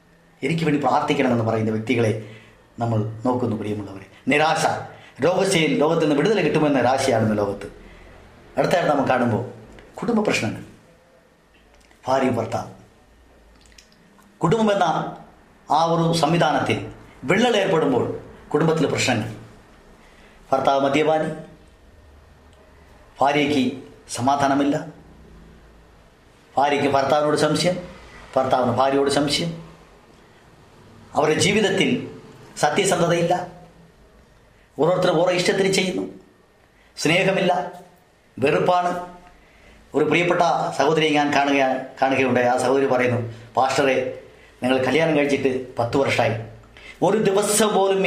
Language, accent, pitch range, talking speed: Malayalam, native, 120-170 Hz, 85 wpm